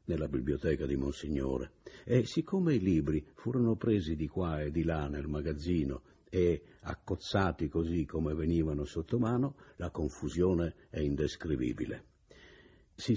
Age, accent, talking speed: 60-79, native, 130 wpm